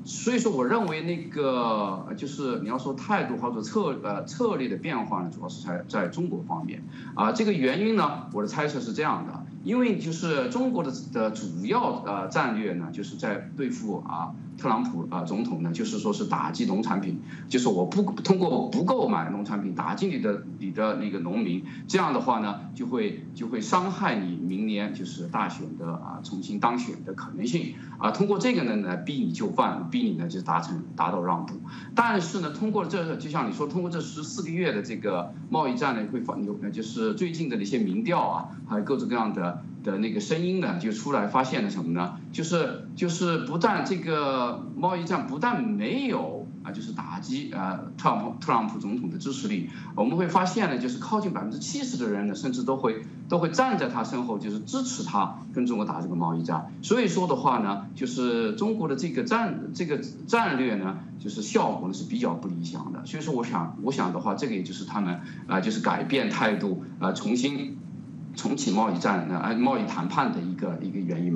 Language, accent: English, Chinese